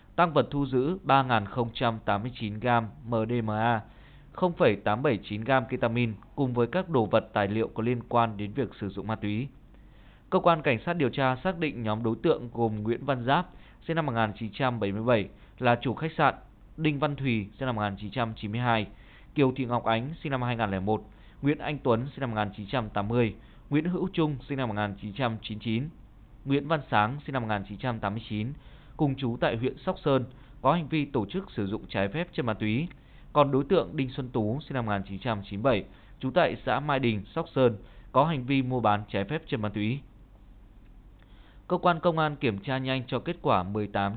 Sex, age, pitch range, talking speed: male, 20-39, 110-140 Hz, 180 wpm